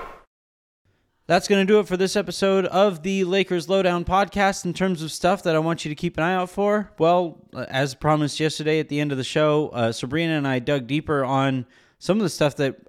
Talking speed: 230 wpm